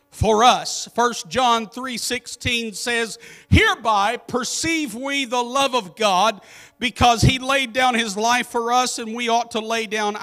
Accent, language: American, English